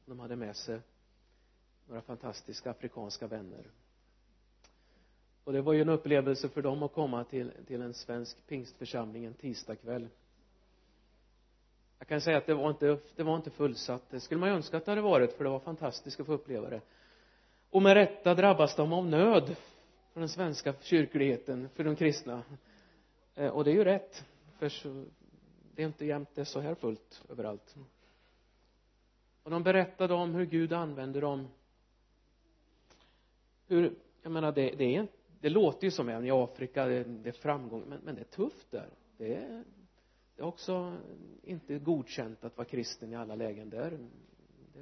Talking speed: 165 wpm